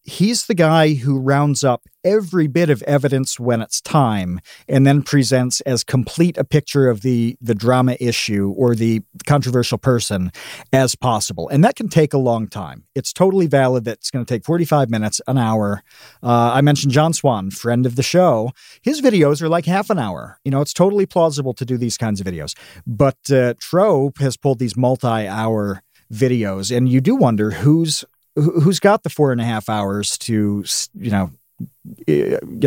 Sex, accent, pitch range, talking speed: male, American, 120-155 Hz, 185 wpm